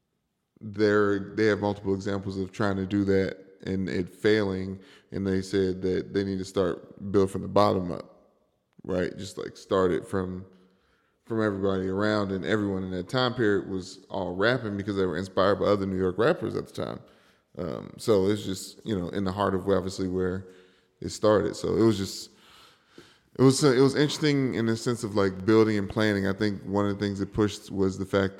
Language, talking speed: English, 205 wpm